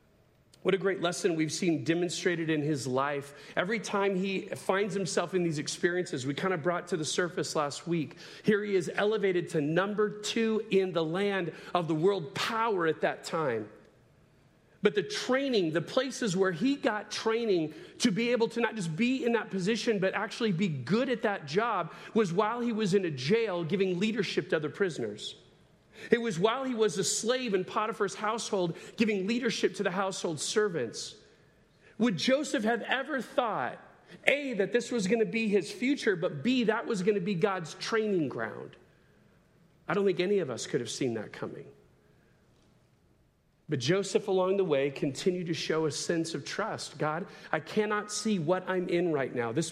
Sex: male